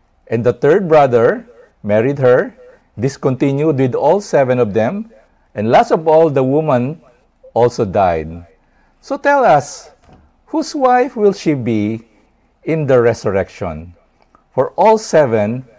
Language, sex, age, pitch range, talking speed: English, male, 50-69, 115-190 Hz, 130 wpm